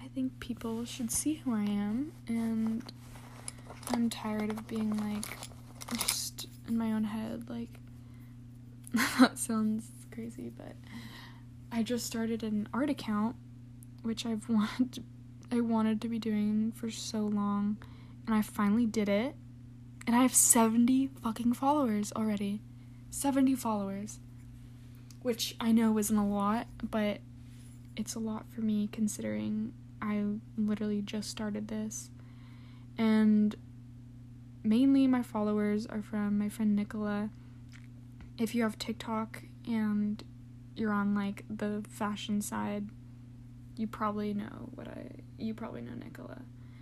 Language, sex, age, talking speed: English, female, 10-29, 130 wpm